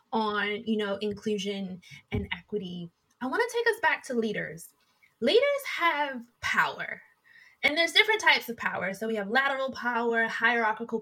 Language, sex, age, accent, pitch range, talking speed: English, female, 20-39, American, 210-285 Hz, 160 wpm